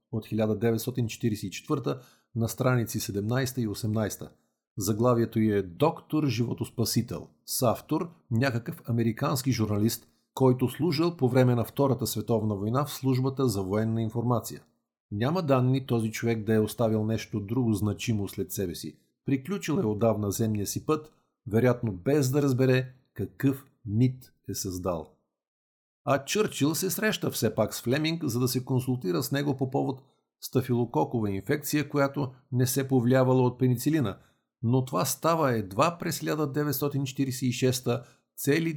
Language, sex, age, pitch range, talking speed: Bulgarian, male, 50-69, 110-135 Hz, 135 wpm